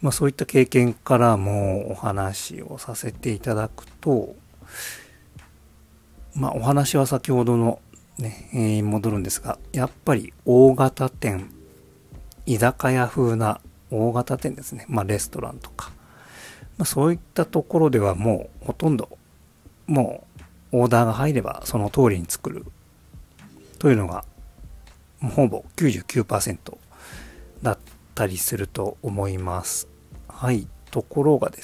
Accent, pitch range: native, 80-125 Hz